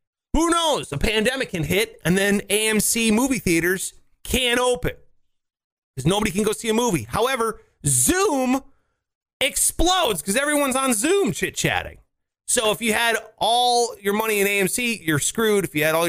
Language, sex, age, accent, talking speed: English, male, 30-49, American, 160 wpm